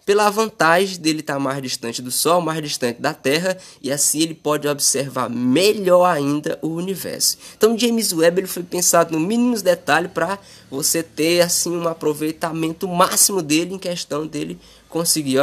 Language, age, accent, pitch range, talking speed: Portuguese, 20-39, Brazilian, 140-175 Hz, 165 wpm